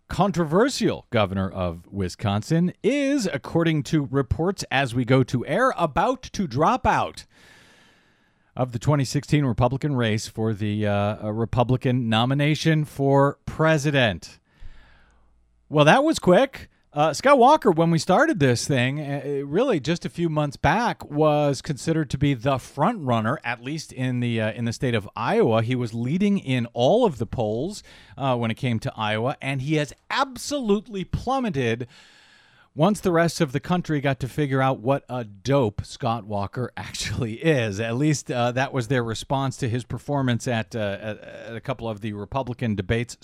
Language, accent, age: English, American, 40-59